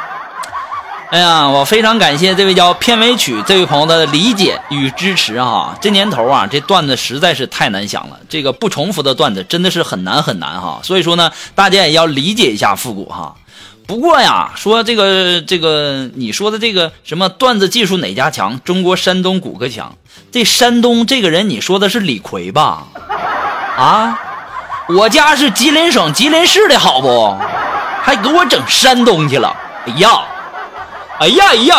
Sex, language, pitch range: male, Chinese, 180-260 Hz